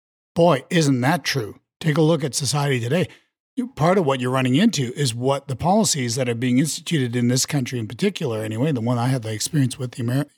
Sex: male